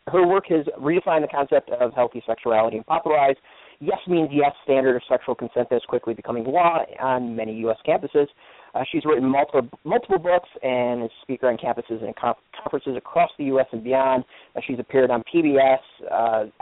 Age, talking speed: 40-59, 190 wpm